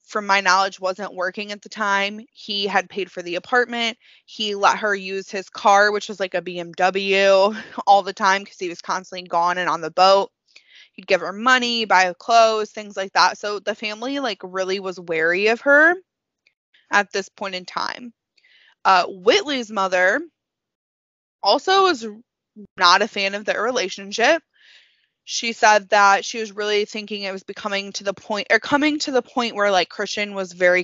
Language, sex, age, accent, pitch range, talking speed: English, female, 20-39, American, 190-230 Hz, 185 wpm